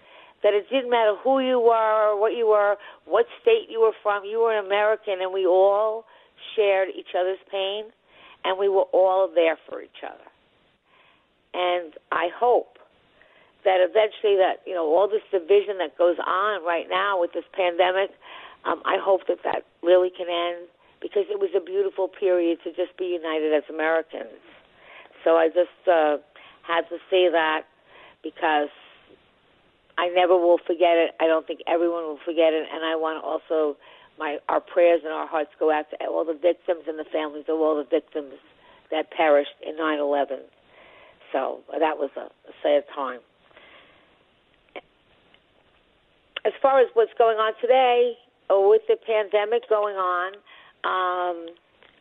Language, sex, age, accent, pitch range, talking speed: English, female, 50-69, American, 165-220 Hz, 165 wpm